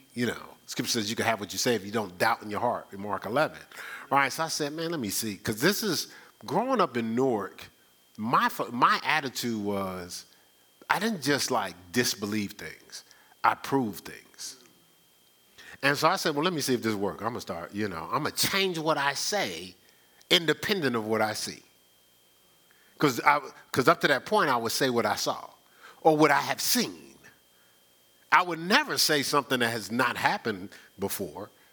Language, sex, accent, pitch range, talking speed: English, male, American, 90-145 Hz, 195 wpm